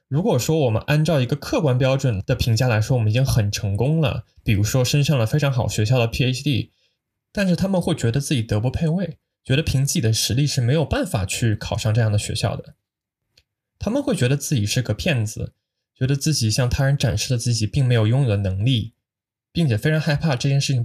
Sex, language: male, Chinese